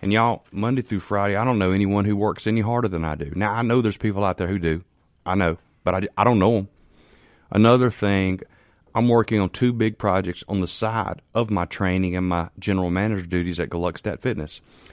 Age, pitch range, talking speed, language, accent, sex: 30-49, 85-110 Hz, 220 wpm, English, American, male